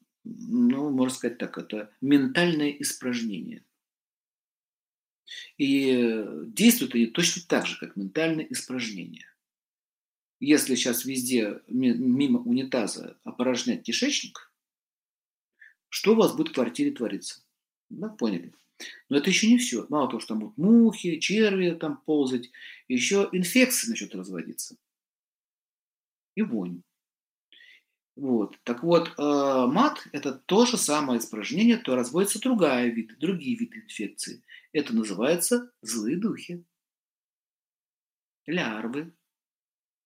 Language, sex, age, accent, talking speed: Russian, male, 50-69, native, 110 wpm